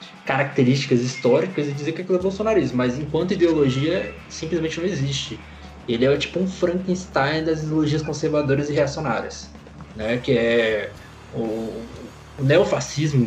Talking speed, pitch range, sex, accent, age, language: 135 wpm, 125-150 Hz, male, Brazilian, 20-39, Portuguese